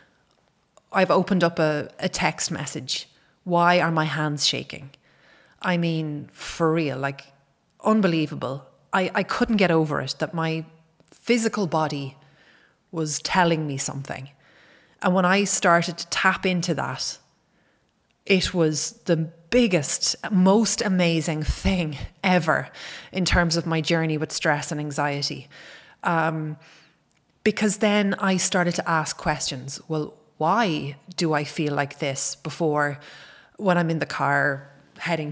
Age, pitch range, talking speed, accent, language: 30-49, 150-180 Hz, 135 wpm, Irish, English